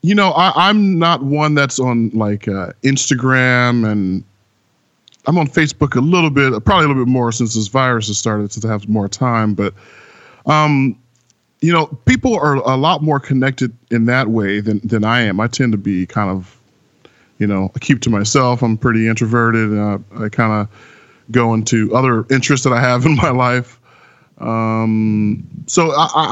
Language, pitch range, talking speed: English, 105-135 Hz, 190 wpm